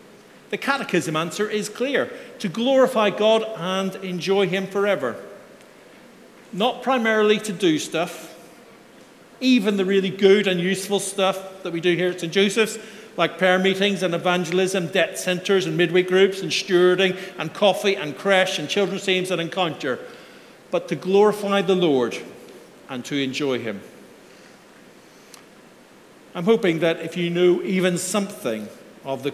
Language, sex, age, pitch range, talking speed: English, male, 50-69, 170-200 Hz, 145 wpm